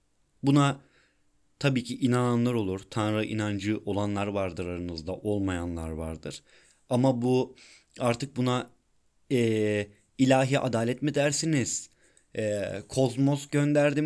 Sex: male